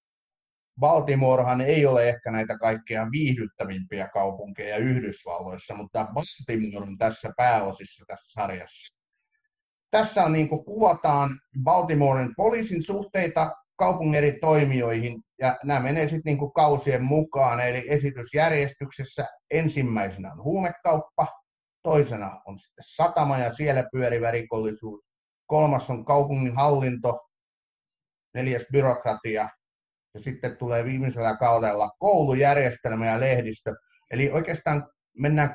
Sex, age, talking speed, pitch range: male, 30-49, 105 wpm, 115-150 Hz